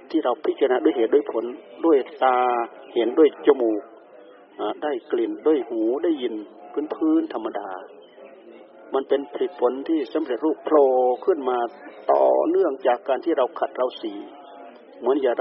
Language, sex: Thai, male